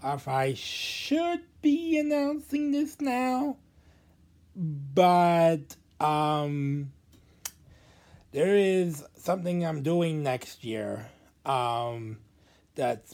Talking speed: 80 wpm